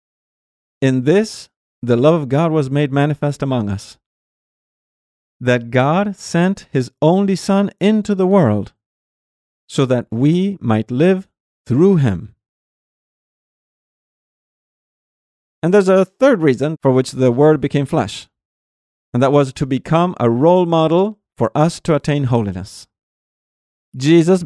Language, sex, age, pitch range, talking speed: English, male, 40-59, 120-170 Hz, 130 wpm